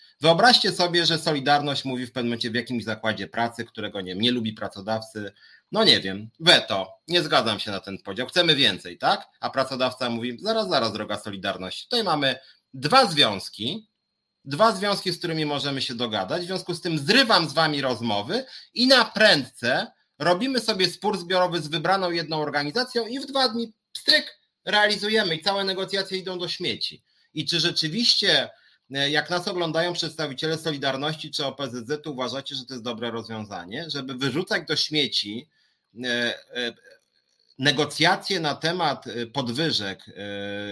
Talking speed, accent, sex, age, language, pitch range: 155 wpm, native, male, 30-49, Polish, 120-175 Hz